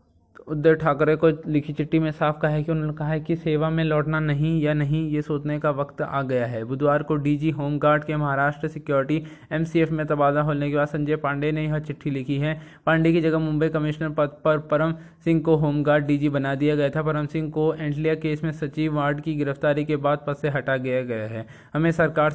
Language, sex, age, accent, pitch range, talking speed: Hindi, male, 20-39, native, 145-155 Hz, 225 wpm